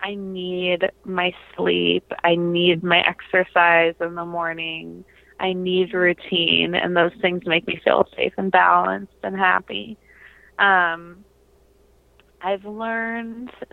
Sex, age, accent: female, 20-39, American